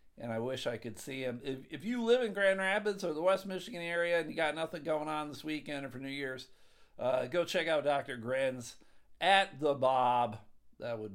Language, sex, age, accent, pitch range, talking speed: English, male, 50-69, American, 135-180 Hz, 225 wpm